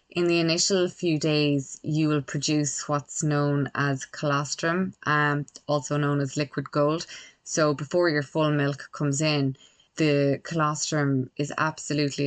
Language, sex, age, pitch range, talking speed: English, female, 20-39, 140-155 Hz, 140 wpm